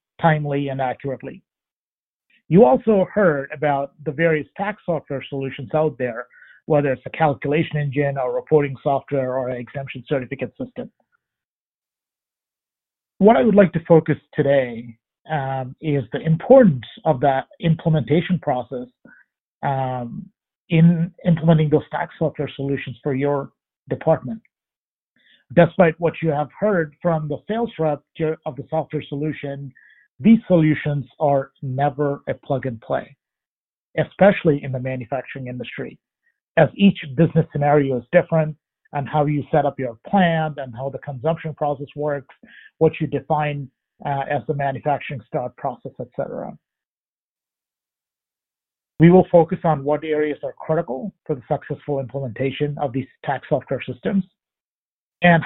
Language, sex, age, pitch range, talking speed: English, male, 50-69, 135-165 Hz, 135 wpm